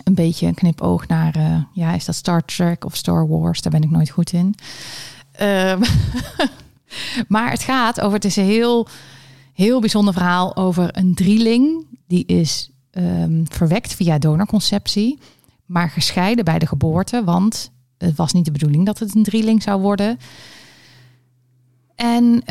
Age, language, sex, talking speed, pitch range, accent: 30-49, Dutch, female, 155 wpm, 150-200 Hz, Dutch